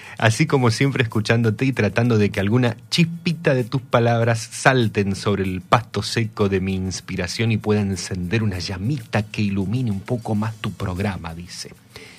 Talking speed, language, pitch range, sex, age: 165 wpm, Spanish, 105-130 Hz, male, 30-49